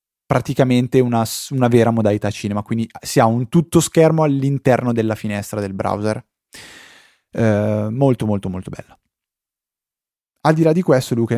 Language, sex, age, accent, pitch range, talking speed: Italian, male, 20-39, native, 110-130 Hz, 150 wpm